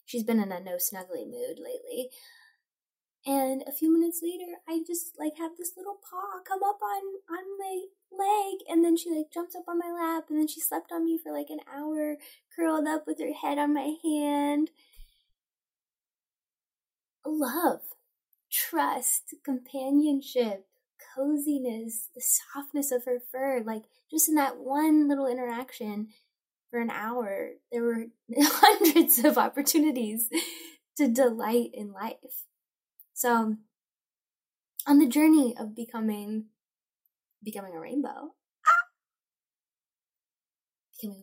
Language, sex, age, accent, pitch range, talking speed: English, female, 10-29, American, 225-330 Hz, 130 wpm